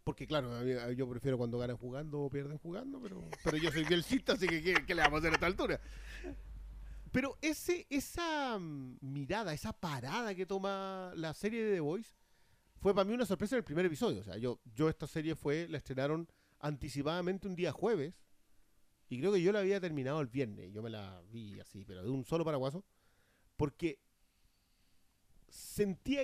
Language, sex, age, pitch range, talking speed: Spanish, male, 40-59, 125-200 Hz, 185 wpm